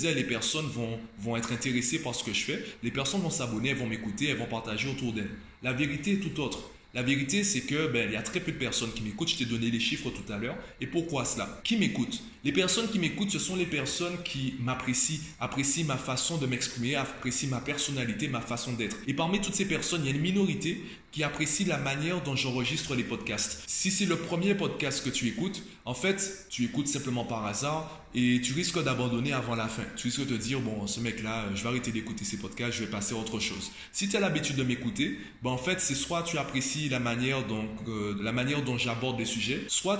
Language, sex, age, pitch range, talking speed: French, male, 20-39, 120-160 Hz, 245 wpm